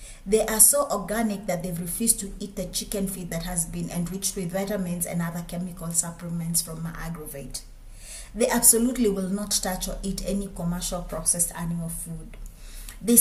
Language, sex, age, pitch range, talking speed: English, female, 30-49, 165-200 Hz, 175 wpm